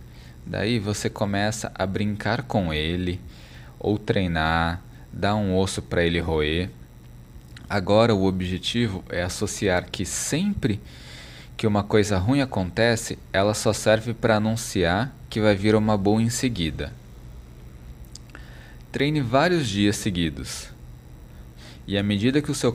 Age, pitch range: 20-39, 85-115 Hz